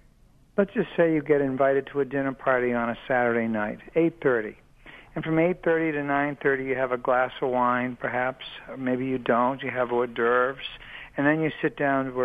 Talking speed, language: 200 wpm, English